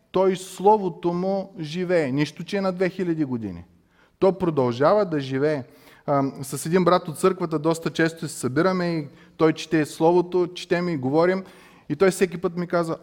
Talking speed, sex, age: 165 wpm, male, 20-39